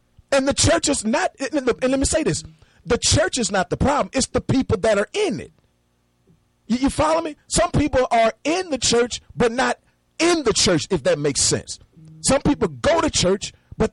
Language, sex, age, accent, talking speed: English, male, 40-59, American, 205 wpm